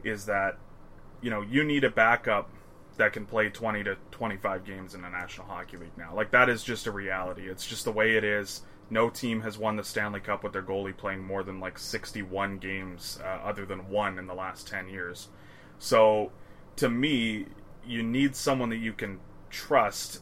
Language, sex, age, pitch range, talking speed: English, male, 20-39, 95-110 Hz, 200 wpm